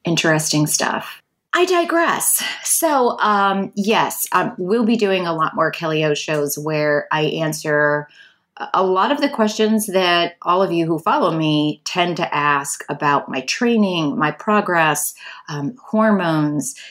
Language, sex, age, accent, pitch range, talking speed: English, female, 30-49, American, 150-185 Hz, 150 wpm